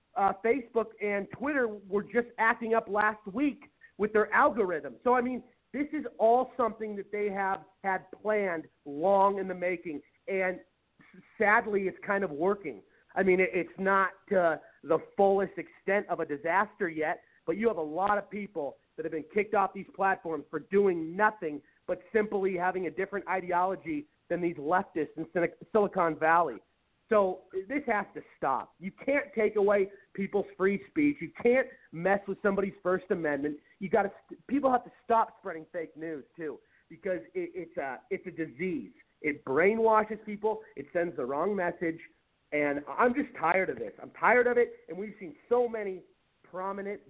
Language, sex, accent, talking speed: English, male, American, 175 wpm